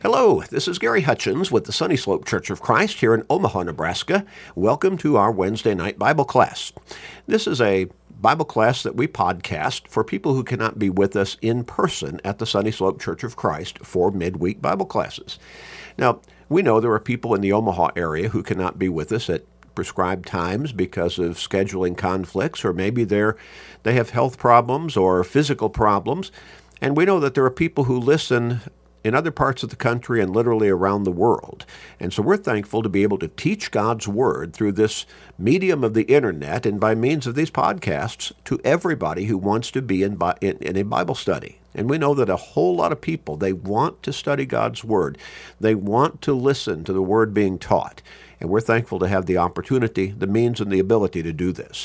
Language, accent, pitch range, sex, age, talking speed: English, American, 95-120 Hz, male, 50-69, 205 wpm